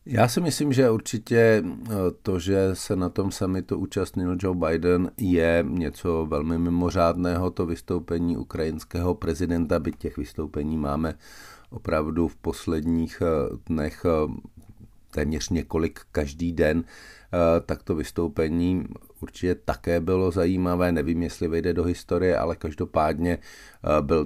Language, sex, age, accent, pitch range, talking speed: Czech, male, 50-69, native, 80-95 Hz, 120 wpm